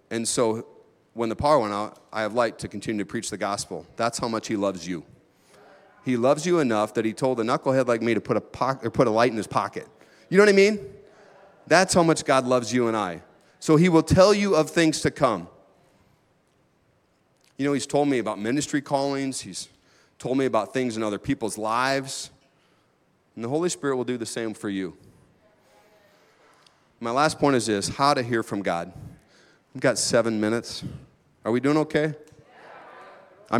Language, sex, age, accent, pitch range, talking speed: English, male, 30-49, American, 105-140 Hz, 200 wpm